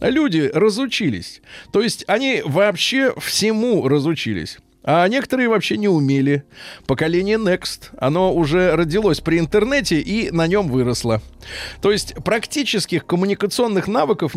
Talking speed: 120 wpm